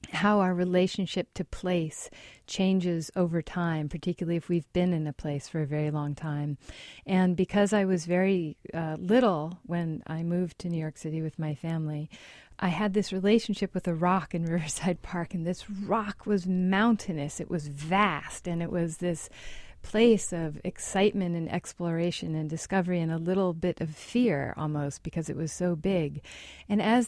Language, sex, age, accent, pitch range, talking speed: English, female, 40-59, American, 160-190 Hz, 175 wpm